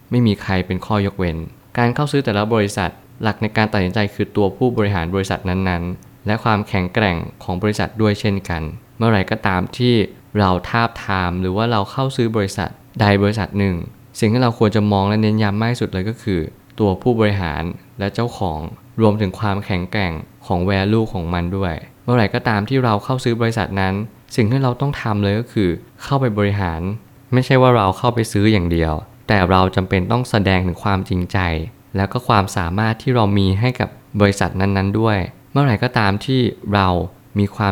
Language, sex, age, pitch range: Thai, male, 20-39, 95-115 Hz